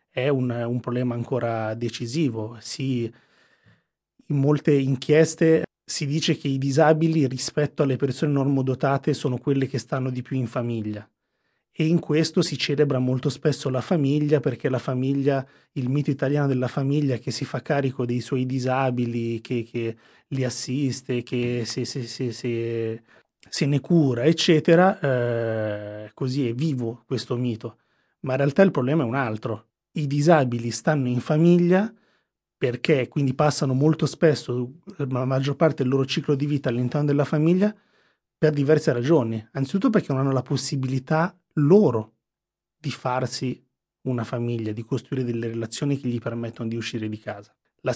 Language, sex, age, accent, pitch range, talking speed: Italian, male, 30-49, native, 120-150 Hz, 150 wpm